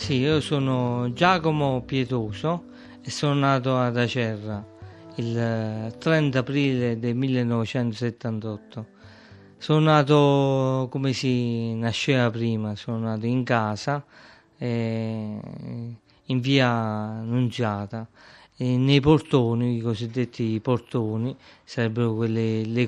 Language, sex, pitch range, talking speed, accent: Italian, male, 115-135 Hz, 95 wpm, native